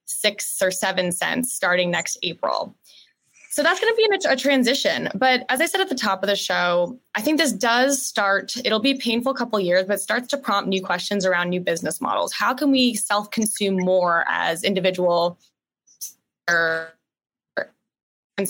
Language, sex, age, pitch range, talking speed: English, female, 20-39, 185-245 Hz, 180 wpm